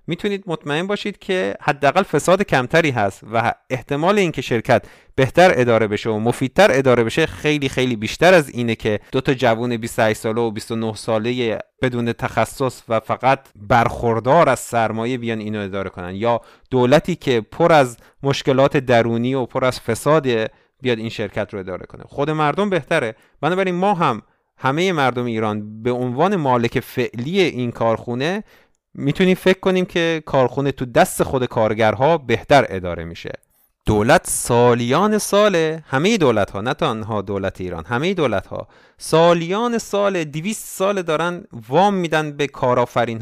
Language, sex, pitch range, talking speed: Persian, male, 115-170 Hz, 155 wpm